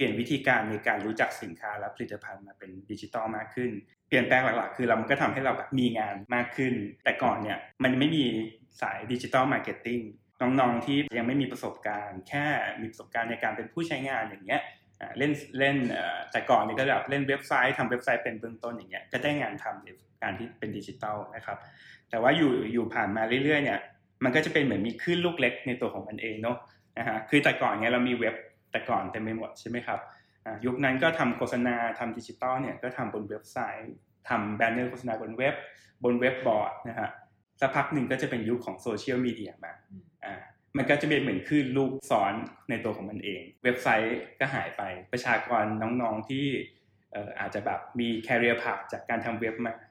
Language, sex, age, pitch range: English, male, 20-39, 110-135 Hz